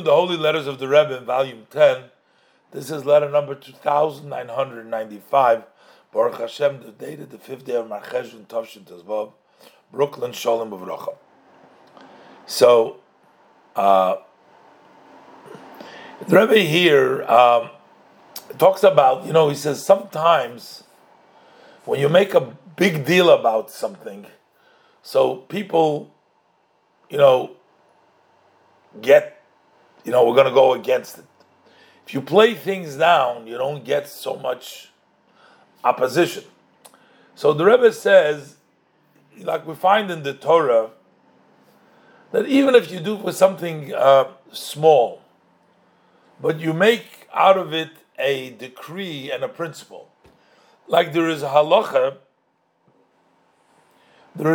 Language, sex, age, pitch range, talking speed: English, male, 50-69, 135-190 Hz, 120 wpm